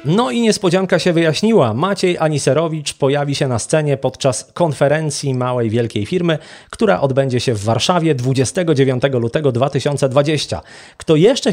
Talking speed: 135 wpm